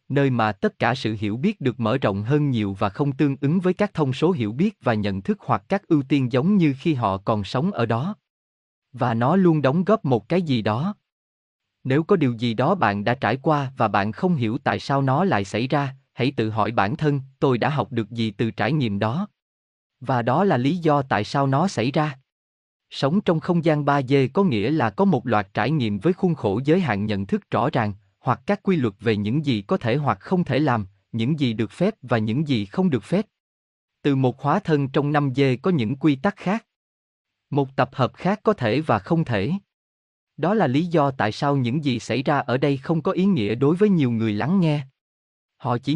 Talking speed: 235 wpm